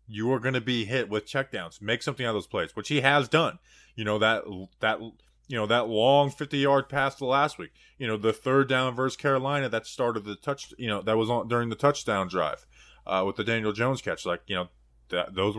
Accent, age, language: American, 20-39, English